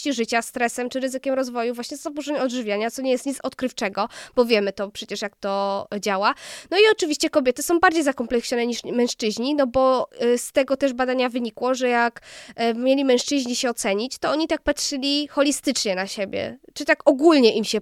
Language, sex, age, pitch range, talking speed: Polish, female, 20-39, 230-280 Hz, 180 wpm